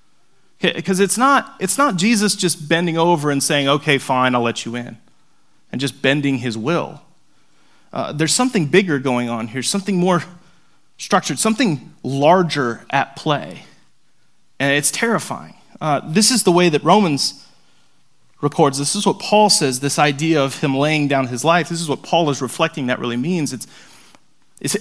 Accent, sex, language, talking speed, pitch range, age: American, male, English, 170 wpm, 140-180 Hz, 30-49